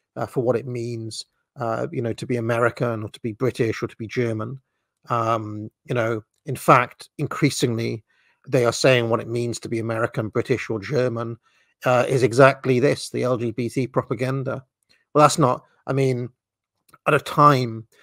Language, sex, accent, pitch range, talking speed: English, male, British, 115-135 Hz, 175 wpm